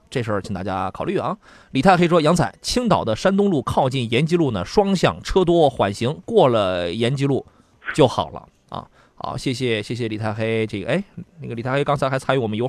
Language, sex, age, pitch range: Chinese, male, 20-39, 120-160 Hz